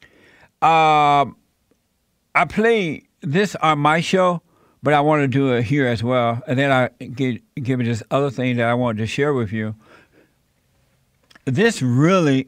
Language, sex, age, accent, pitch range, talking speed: English, male, 60-79, American, 120-150 Hz, 160 wpm